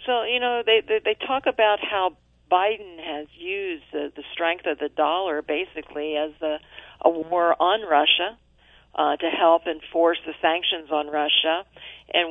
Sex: female